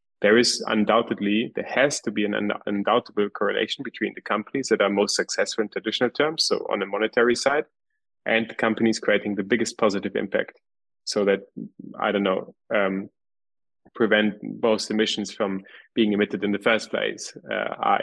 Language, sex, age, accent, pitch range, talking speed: English, male, 20-39, German, 105-115 Hz, 170 wpm